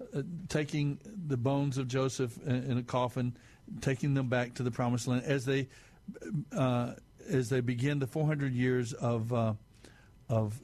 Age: 60-79